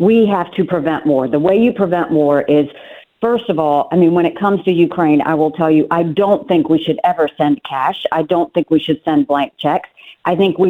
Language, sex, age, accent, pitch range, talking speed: English, female, 50-69, American, 165-205 Hz, 245 wpm